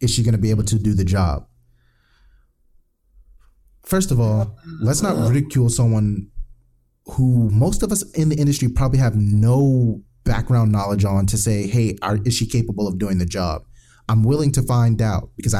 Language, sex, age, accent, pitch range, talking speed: English, male, 30-49, American, 105-125 Hz, 175 wpm